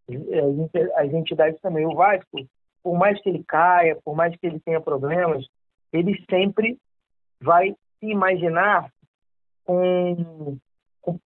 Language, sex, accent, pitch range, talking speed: Portuguese, male, Brazilian, 165-210 Hz, 120 wpm